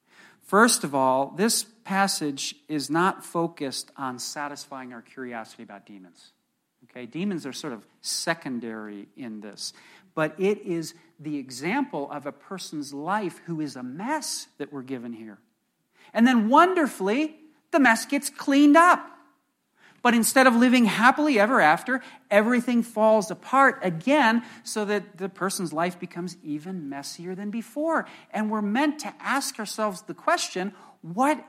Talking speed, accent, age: 145 wpm, American, 50-69